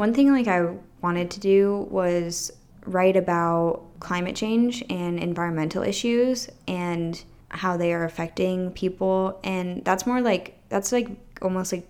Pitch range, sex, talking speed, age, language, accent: 165-200 Hz, female, 145 wpm, 10-29, English, American